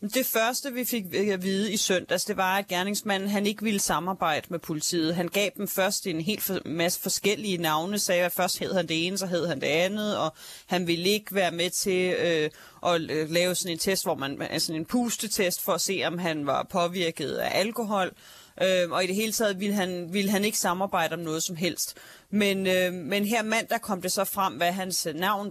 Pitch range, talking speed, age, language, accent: 170-200 Hz, 225 wpm, 30-49, Danish, native